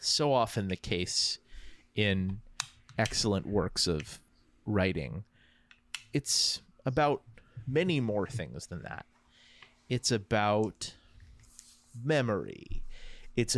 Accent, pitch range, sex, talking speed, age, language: American, 95-125 Hz, male, 90 wpm, 30-49, English